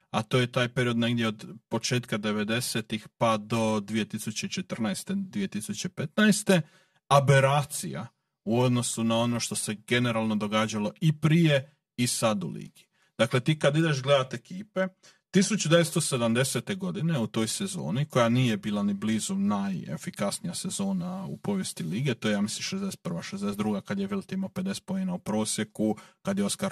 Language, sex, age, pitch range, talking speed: Croatian, male, 40-59, 120-185 Hz, 150 wpm